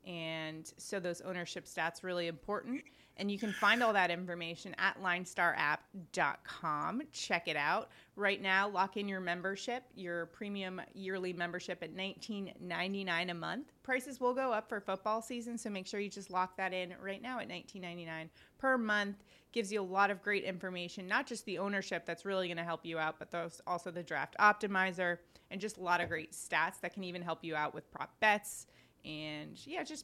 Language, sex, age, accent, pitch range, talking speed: English, female, 30-49, American, 175-230 Hz, 195 wpm